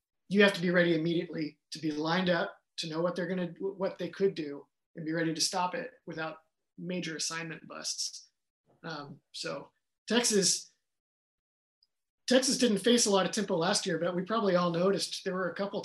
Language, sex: English, male